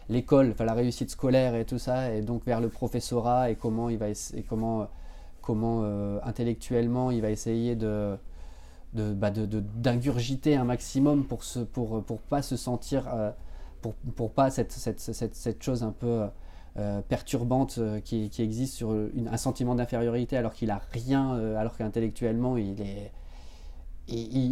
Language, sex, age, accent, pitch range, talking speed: French, male, 20-39, French, 110-125 Hz, 170 wpm